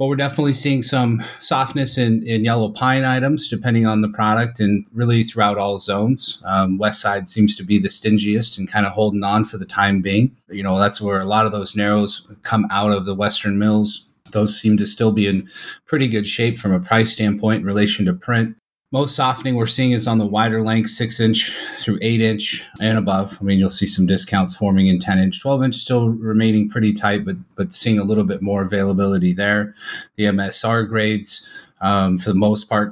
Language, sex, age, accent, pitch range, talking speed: English, male, 30-49, American, 100-120 Hz, 210 wpm